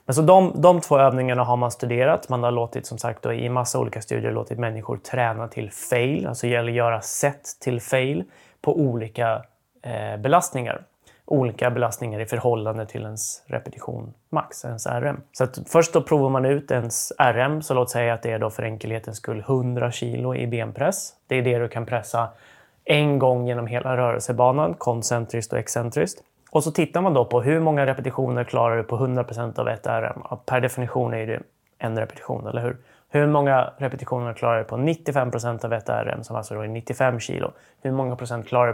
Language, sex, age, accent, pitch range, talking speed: Swedish, male, 20-39, native, 115-135 Hz, 195 wpm